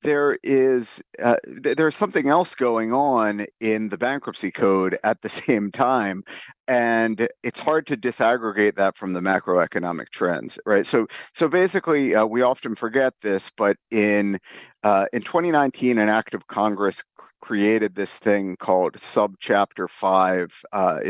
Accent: American